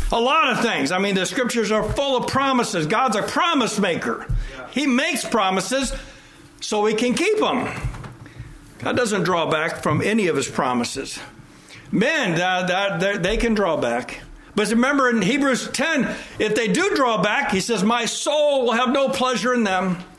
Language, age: English, 60-79